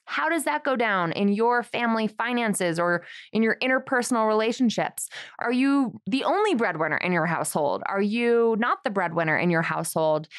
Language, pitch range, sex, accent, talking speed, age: English, 180-255 Hz, female, American, 175 wpm, 20-39